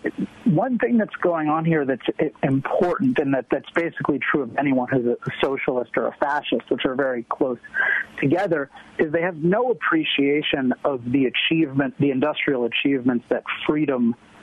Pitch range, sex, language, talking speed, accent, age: 130-160 Hz, male, English, 160 wpm, American, 40-59